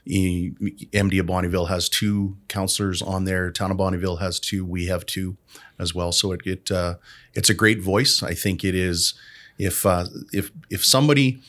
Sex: male